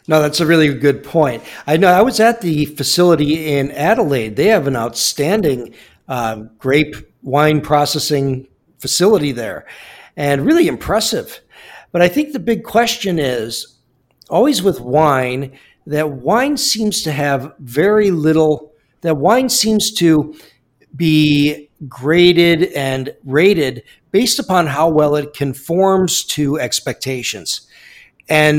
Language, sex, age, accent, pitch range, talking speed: English, male, 50-69, American, 140-175 Hz, 130 wpm